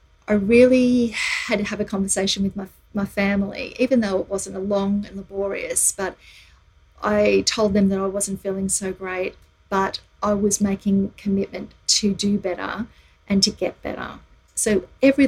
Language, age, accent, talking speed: English, 40-59, Australian, 170 wpm